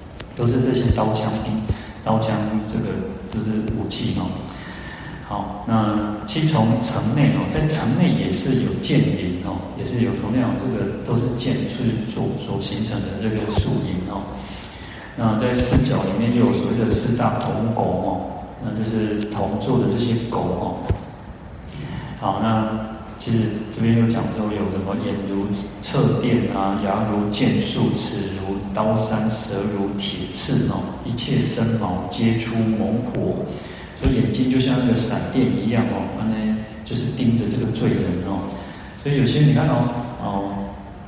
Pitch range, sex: 100-120 Hz, male